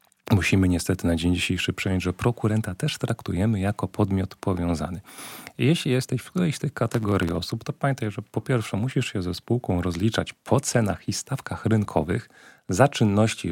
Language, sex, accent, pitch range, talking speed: Polish, male, native, 90-120 Hz, 170 wpm